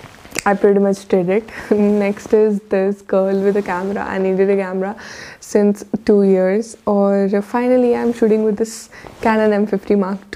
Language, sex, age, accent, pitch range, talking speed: Hindi, female, 20-39, native, 195-225 Hz, 170 wpm